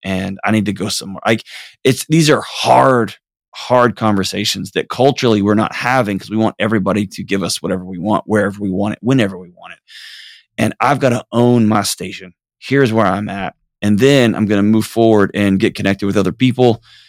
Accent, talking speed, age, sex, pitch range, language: American, 205 wpm, 20-39, male, 100-125 Hz, English